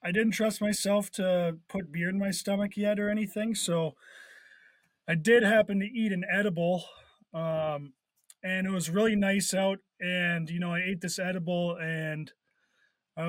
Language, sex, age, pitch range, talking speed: English, male, 20-39, 175-215 Hz, 165 wpm